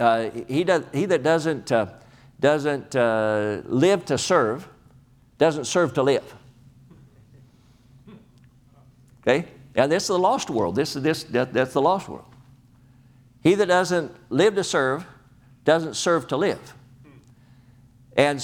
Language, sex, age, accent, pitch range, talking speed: English, male, 60-79, American, 125-140 Hz, 135 wpm